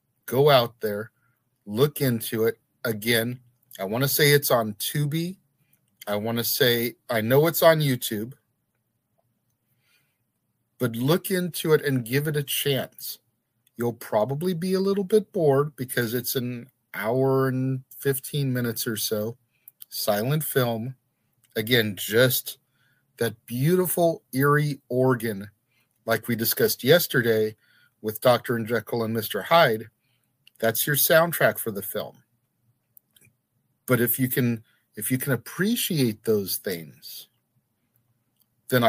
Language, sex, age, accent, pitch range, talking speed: English, male, 40-59, American, 115-140 Hz, 130 wpm